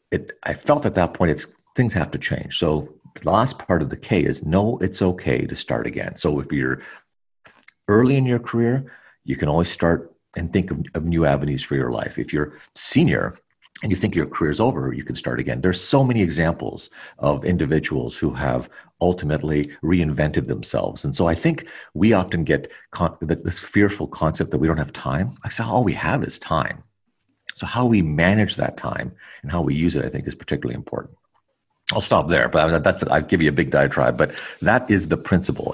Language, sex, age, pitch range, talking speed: English, male, 50-69, 75-105 Hz, 200 wpm